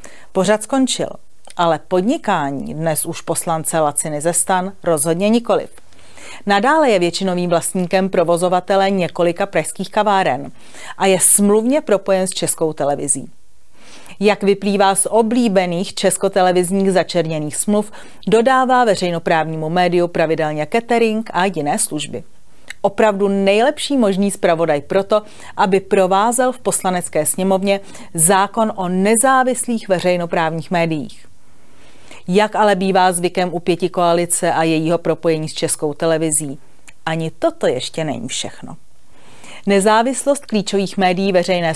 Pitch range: 165-205 Hz